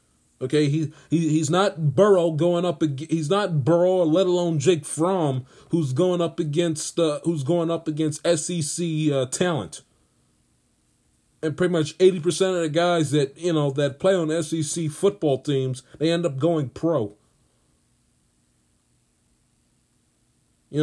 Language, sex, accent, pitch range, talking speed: English, male, American, 145-175 Hz, 145 wpm